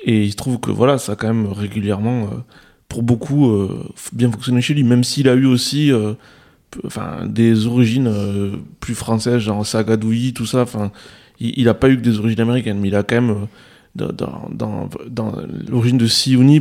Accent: French